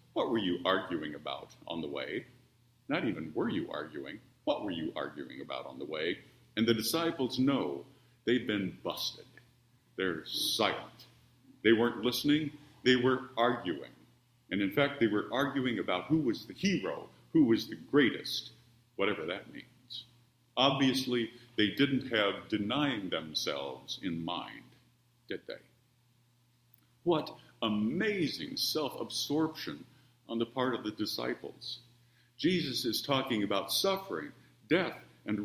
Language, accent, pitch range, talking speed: English, American, 115-130 Hz, 135 wpm